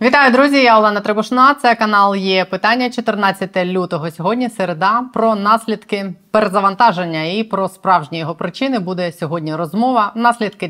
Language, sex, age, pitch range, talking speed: Ukrainian, female, 20-39, 160-200 Hz, 140 wpm